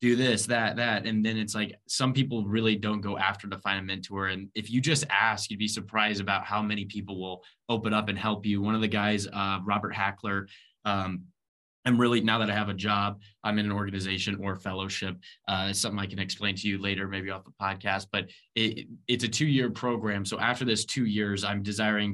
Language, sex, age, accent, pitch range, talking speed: English, male, 20-39, American, 100-110 Hz, 220 wpm